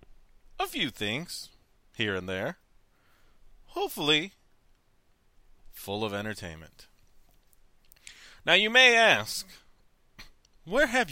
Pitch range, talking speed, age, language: 95-155 Hz, 85 wpm, 30-49, English